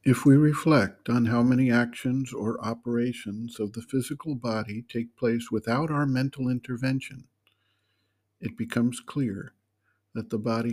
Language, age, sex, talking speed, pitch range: English, 60-79, male, 140 wpm, 115-140 Hz